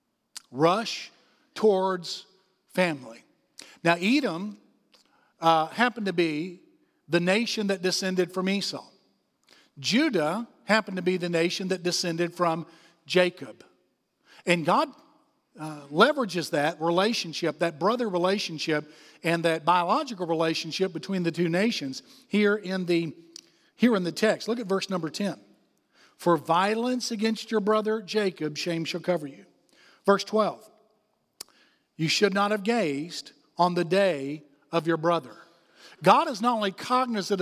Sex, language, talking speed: male, English, 130 wpm